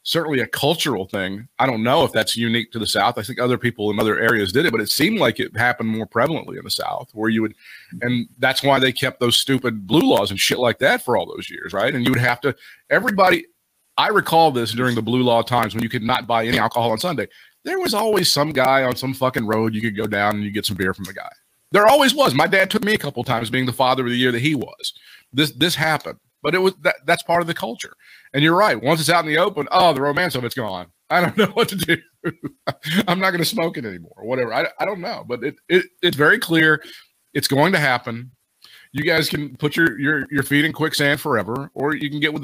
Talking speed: 270 wpm